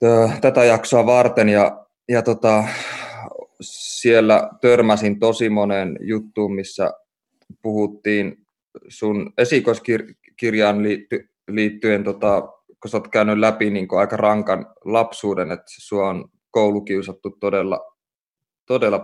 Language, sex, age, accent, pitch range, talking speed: Finnish, male, 20-39, native, 100-115 Hz, 100 wpm